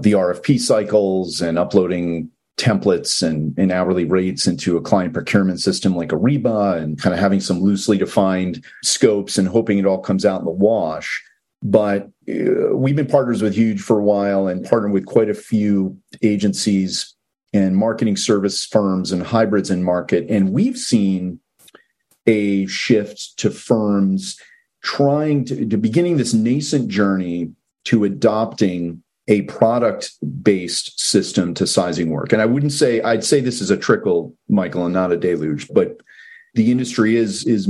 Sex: male